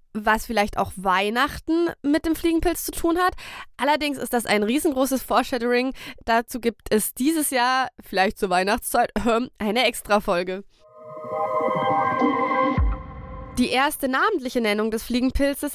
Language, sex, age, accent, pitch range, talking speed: German, female, 20-39, German, 225-285 Hz, 120 wpm